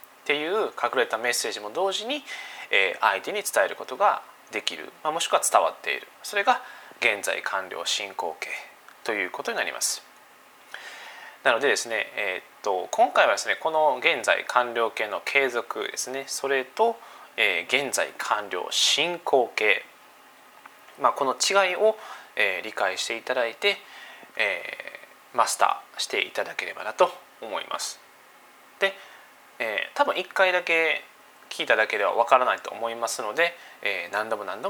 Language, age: Japanese, 20-39